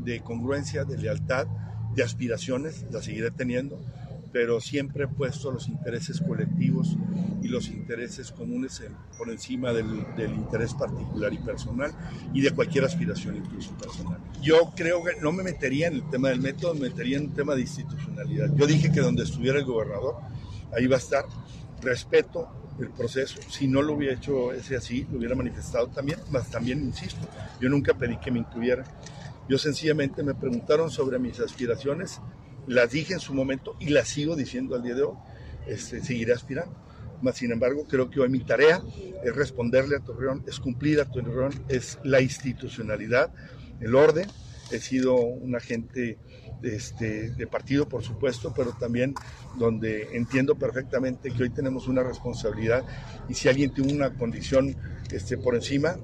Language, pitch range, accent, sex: Spanish, 120-145 Hz, Mexican, male